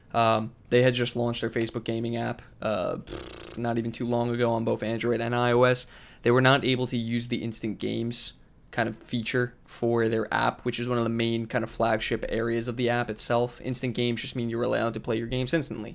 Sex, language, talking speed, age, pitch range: male, English, 225 wpm, 20-39, 115-125 Hz